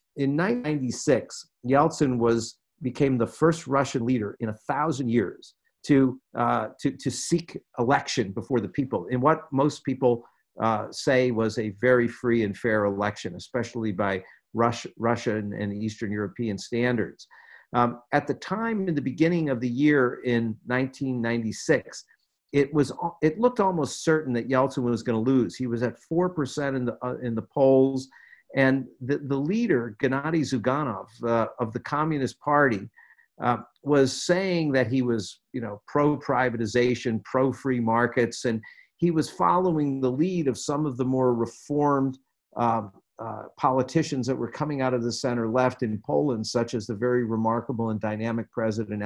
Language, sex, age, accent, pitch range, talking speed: English, male, 50-69, American, 115-140 Hz, 160 wpm